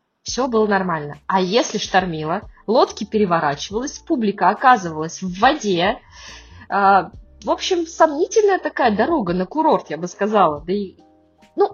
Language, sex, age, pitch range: Russian, female, 20-39, 180-270 Hz